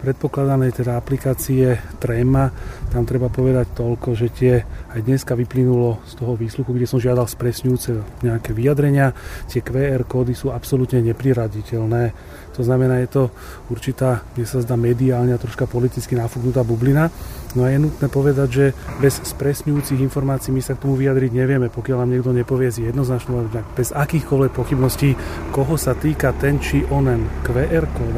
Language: Slovak